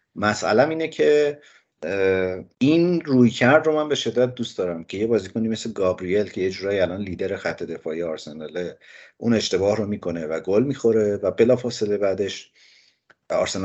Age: 50-69